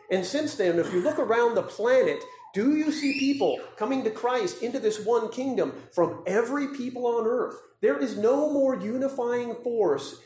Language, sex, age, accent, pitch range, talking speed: English, male, 40-59, American, 160-235 Hz, 180 wpm